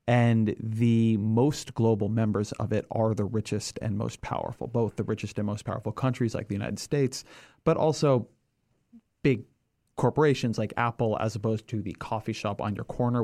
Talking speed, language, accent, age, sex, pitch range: 175 wpm, English, American, 30-49, male, 105-125 Hz